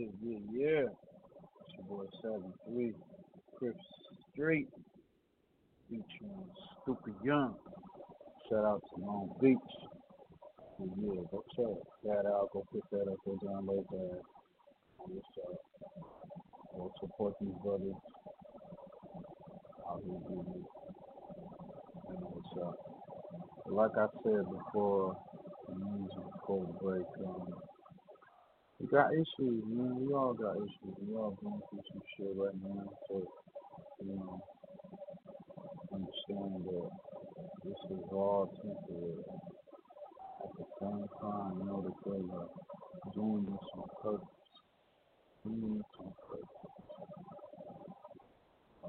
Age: 50-69